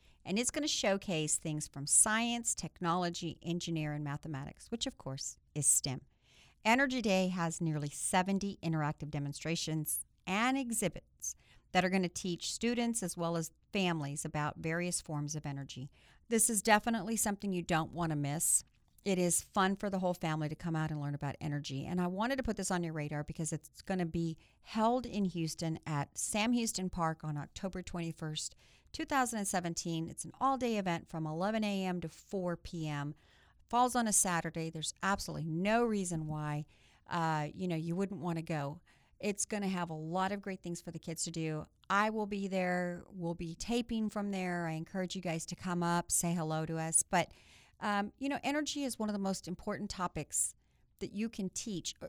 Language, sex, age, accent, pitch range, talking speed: English, female, 50-69, American, 160-205 Hz, 190 wpm